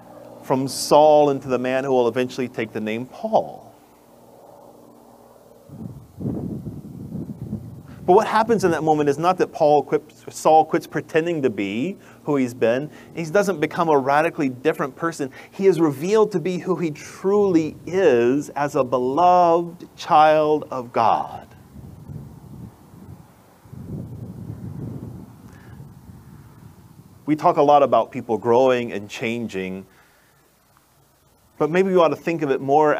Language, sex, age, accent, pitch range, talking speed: English, male, 30-49, American, 115-150 Hz, 130 wpm